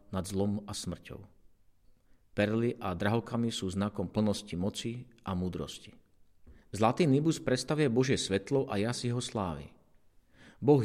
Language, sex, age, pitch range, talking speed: Slovak, male, 40-59, 100-125 Hz, 125 wpm